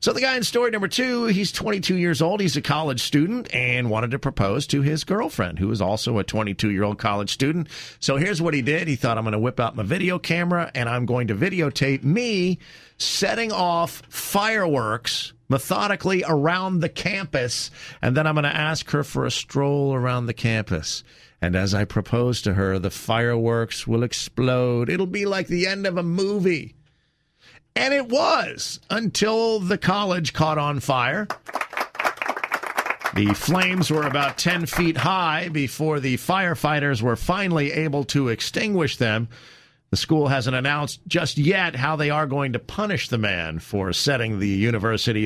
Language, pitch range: English, 120-185 Hz